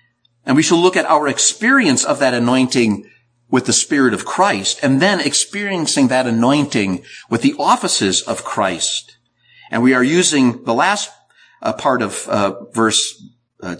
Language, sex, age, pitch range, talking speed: English, male, 50-69, 115-170 Hz, 160 wpm